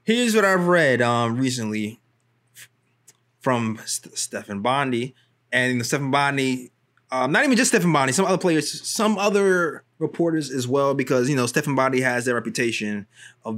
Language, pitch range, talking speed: English, 125-165 Hz, 170 wpm